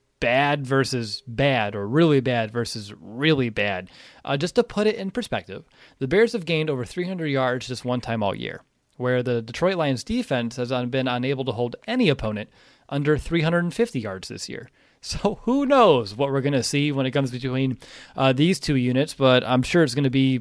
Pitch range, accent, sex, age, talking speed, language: 125-155 Hz, American, male, 30-49, 200 wpm, English